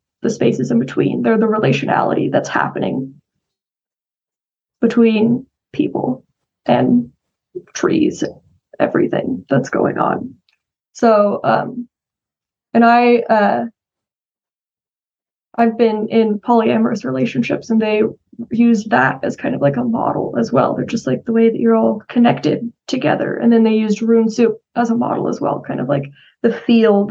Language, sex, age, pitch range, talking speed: English, female, 10-29, 205-235 Hz, 145 wpm